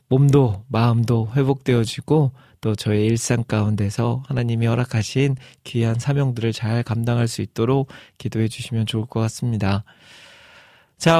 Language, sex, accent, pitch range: Korean, male, native, 115-145 Hz